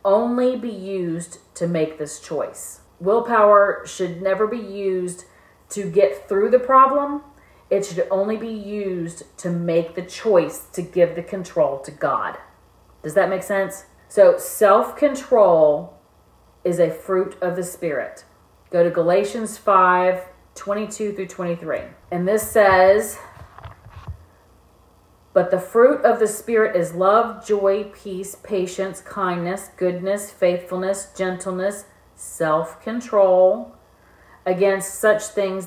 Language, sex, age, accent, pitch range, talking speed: English, female, 40-59, American, 175-210 Hz, 125 wpm